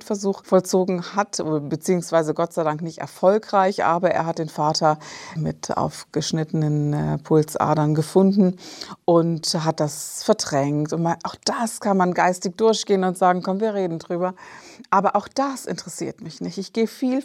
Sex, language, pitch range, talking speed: female, German, 170-205 Hz, 155 wpm